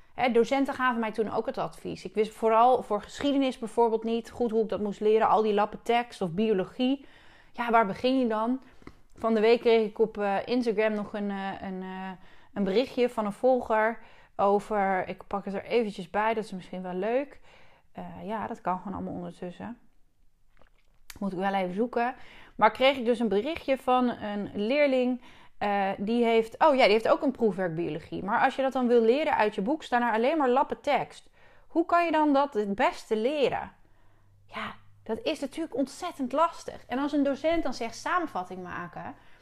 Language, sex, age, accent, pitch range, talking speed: Dutch, female, 20-39, Dutch, 200-260 Hz, 190 wpm